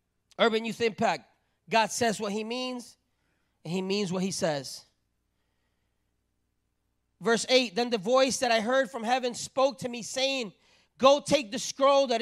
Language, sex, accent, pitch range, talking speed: English, male, American, 205-260 Hz, 160 wpm